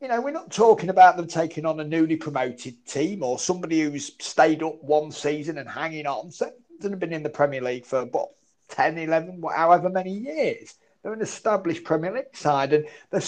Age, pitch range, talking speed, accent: 40-59, 145-200 Hz, 200 wpm, British